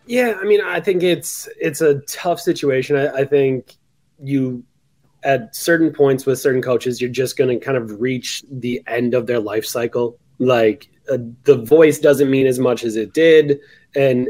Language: English